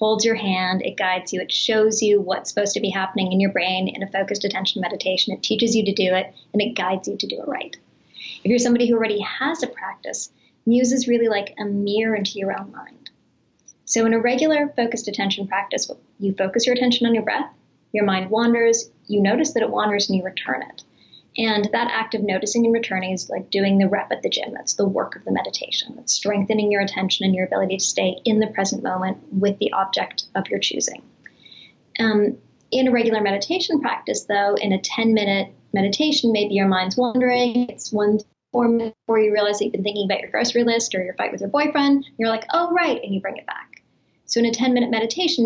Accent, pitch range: American, 195-235 Hz